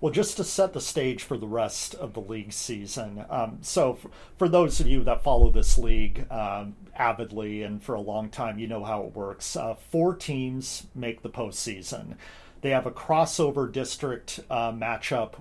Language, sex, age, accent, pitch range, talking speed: English, male, 40-59, American, 110-135 Hz, 185 wpm